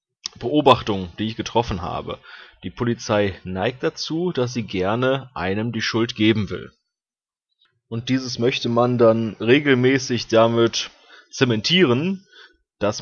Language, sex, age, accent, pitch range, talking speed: German, male, 30-49, German, 105-135 Hz, 120 wpm